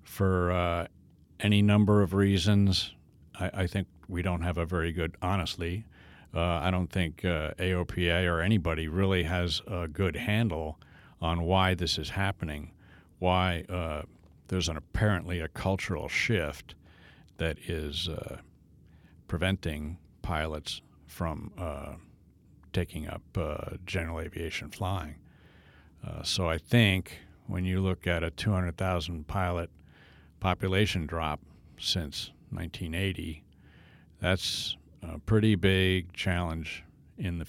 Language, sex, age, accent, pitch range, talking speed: English, male, 60-79, American, 80-95 Hz, 125 wpm